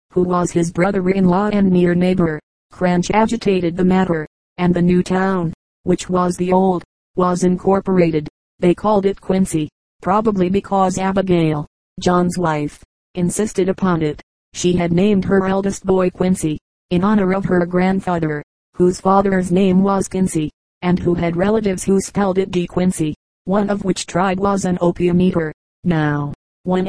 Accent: American